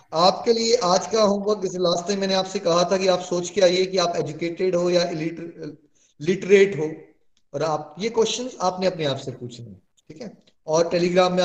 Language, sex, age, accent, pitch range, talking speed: Hindi, male, 30-49, native, 150-190 Hz, 210 wpm